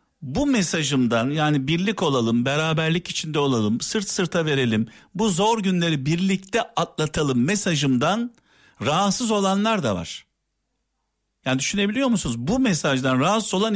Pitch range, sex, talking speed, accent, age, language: 135-190 Hz, male, 120 wpm, native, 50-69, Turkish